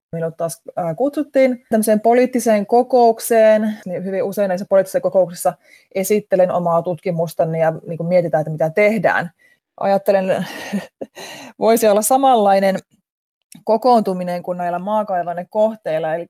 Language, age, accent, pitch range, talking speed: Finnish, 20-39, native, 170-215 Hz, 115 wpm